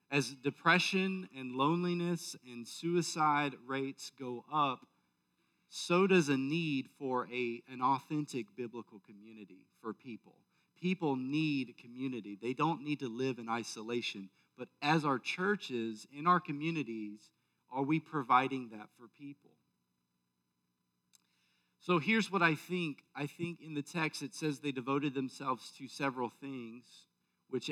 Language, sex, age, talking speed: English, male, 40-59, 135 wpm